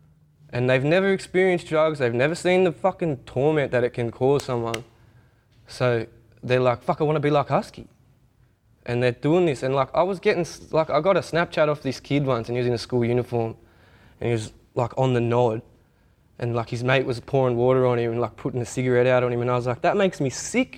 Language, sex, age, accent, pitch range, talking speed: English, male, 20-39, Australian, 120-160 Hz, 235 wpm